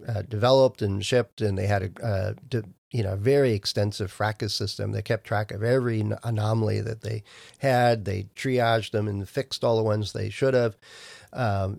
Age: 40-59